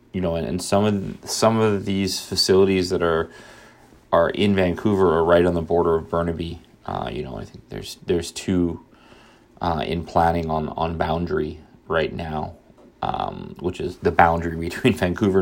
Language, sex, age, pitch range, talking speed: English, male, 30-49, 80-95 Hz, 175 wpm